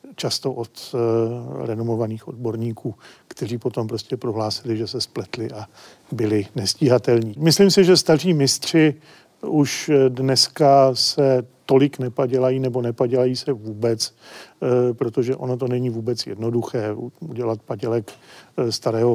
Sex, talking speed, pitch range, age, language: male, 125 wpm, 115-130 Hz, 40-59, Czech